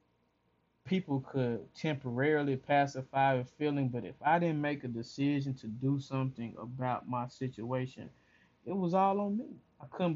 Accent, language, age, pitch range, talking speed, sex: American, English, 20-39, 130-165 Hz, 155 wpm, male